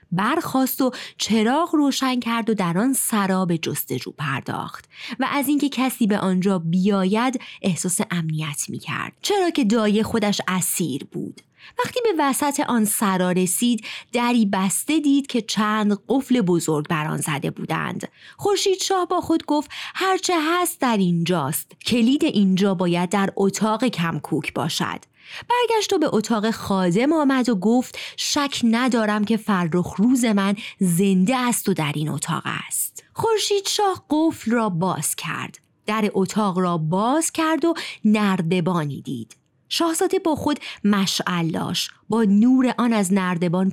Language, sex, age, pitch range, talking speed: Persian, female, 20-39, 190-285 Hz, 140 wpm